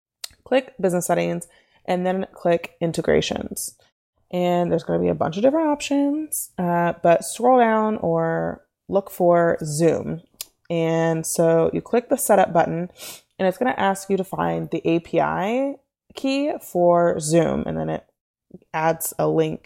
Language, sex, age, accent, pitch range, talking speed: English, female, 20-39, American, 160-215 Hz, 150 wpm